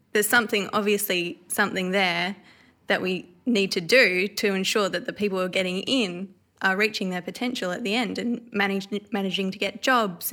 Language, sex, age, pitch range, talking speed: English, female, 20-39, 185-210 Hz, 180 wpm